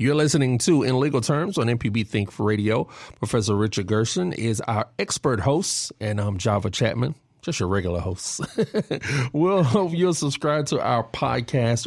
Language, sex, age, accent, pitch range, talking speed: English, male, 40-59, American, 110-140 Hz, 160 wpm